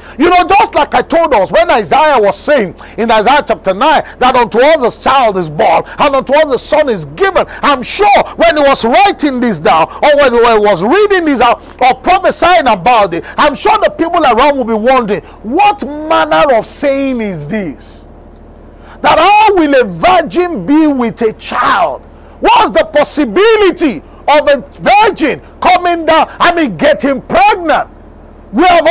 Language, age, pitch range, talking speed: English, 40-59, 270-355 Hz, 180 wpm